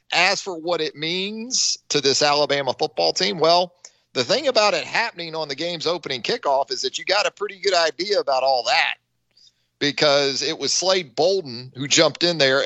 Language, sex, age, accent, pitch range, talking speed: English, male, 40-59, American, 115-170 Hz, 195 wpm